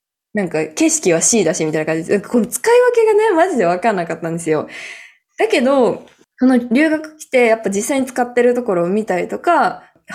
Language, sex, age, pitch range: Japanese, female, 20-39, 180-285 Hz